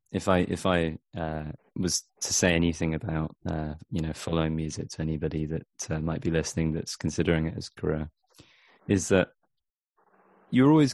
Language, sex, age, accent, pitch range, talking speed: English, male, 20-39, British, 80-90 Hz, 170 wpm